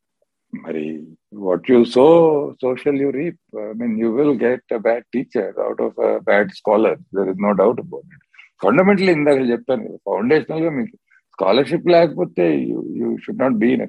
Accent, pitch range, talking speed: native, 120-190 Hz, 185 wpm